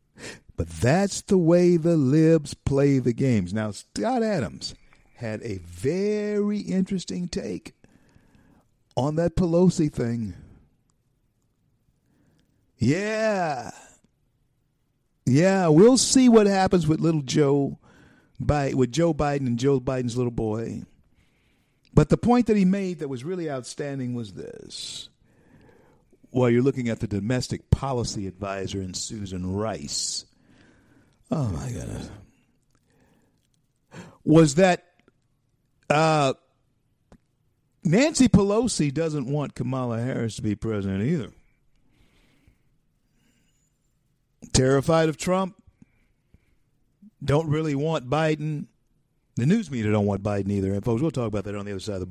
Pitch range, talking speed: 115-165 Hz, 115 wpm